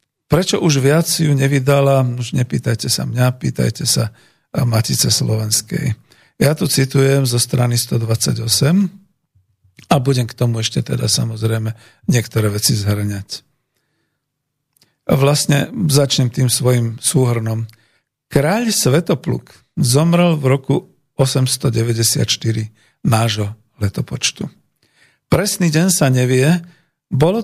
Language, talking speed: Slovak, 105 wpm